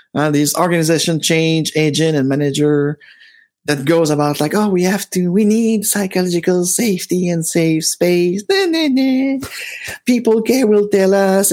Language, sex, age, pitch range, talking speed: English, male, 50-69, 155-205 Hz, 165 wpm